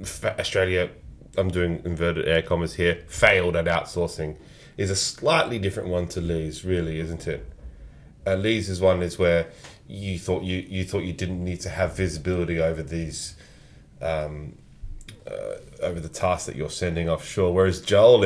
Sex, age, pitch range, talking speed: male, 20-39, 85-105 Hz, 165 wpm